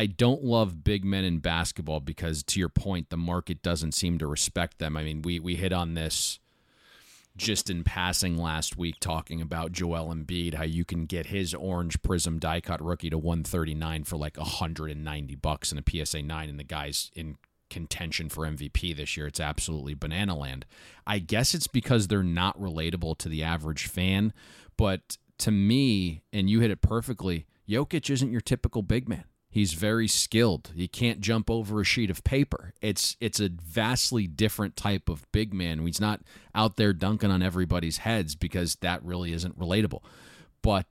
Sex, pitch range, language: male, 80-105 Hz, English